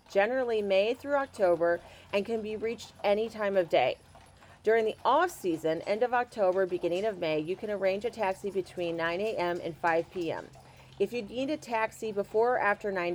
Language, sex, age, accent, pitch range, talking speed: English, female, 40-59, American, 180-225 Hz, 190 wpm